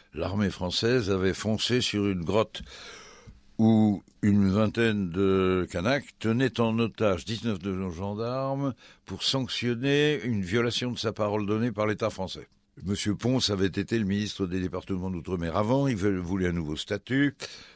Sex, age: male, 60-79